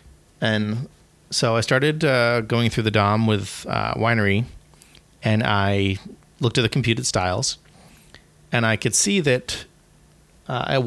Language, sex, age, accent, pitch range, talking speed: English, male, 30-49, American, 100-115 Hz, 145 wpm